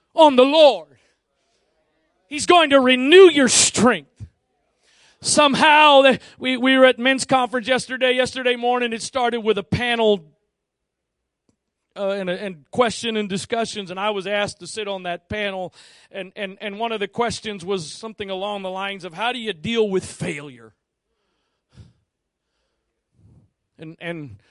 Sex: male